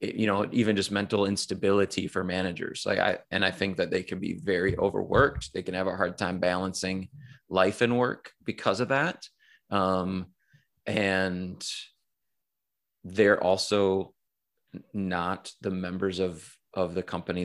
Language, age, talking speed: English, 20-39, 150 wpm